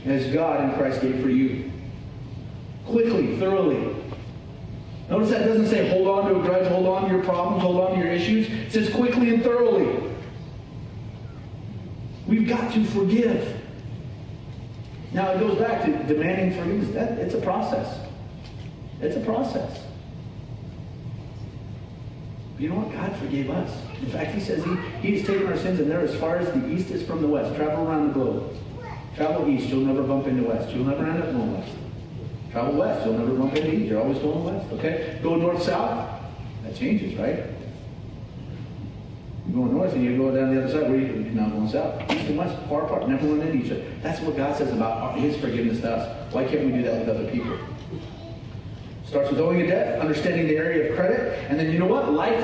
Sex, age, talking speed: male, 40-59, 195 wpm